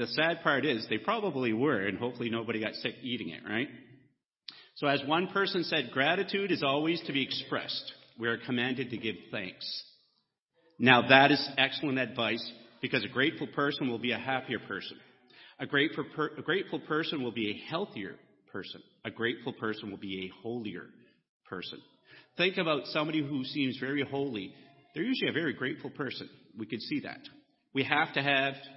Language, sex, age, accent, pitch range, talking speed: English, male, 40-59, American, 115-150 Hz, 175 wpm